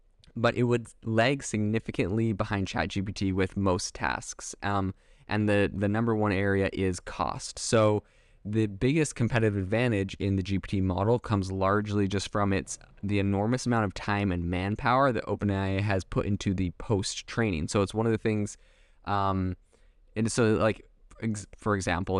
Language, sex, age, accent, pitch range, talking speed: English, male, 20-39, American, 95-110 Hz, 160 wpm